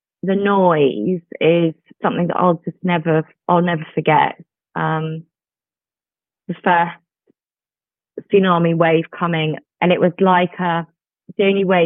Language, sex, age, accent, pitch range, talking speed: English, female, 20-39, British, 170-200 Hz, 125 wpm